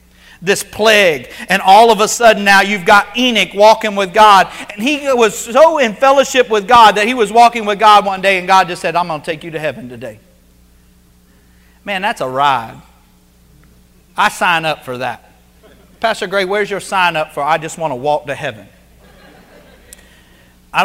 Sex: male